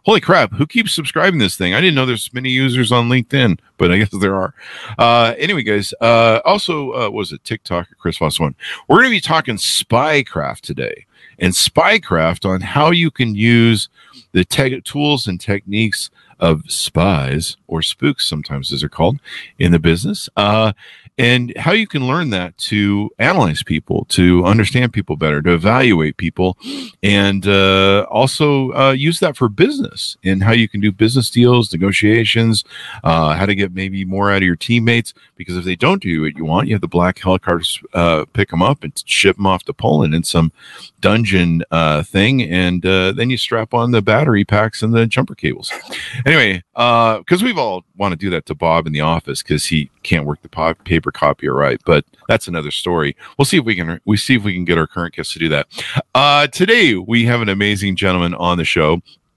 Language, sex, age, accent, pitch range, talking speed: English, male, 50-69, American, 90-120 Hz, 205 wpm